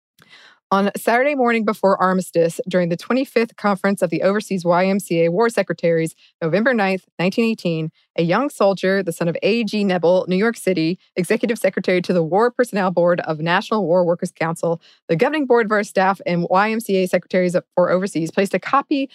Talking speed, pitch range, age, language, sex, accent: 170 wpm, 175-220 Hz, 20-39, English, female, American